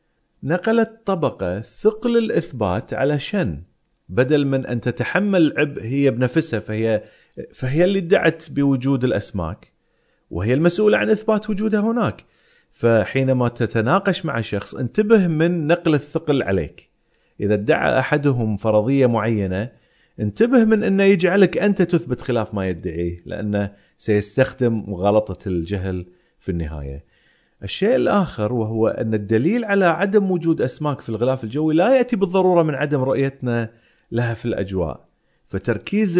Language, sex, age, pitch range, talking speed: Arabic, male, 40-59, 110-170 Hz, 125 wpm